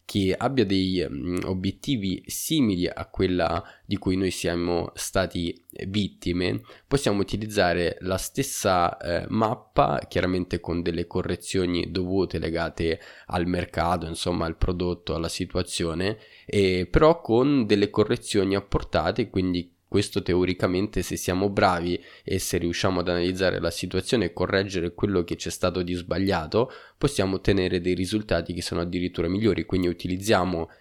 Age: 20-39